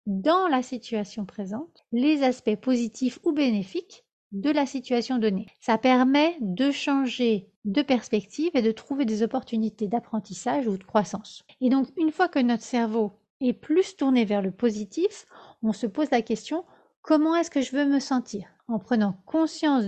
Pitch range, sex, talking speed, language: 215-280 Hz, female, 175 wpm, French